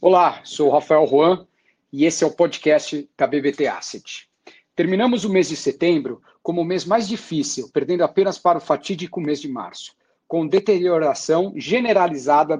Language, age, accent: English, 50-69, Brazilian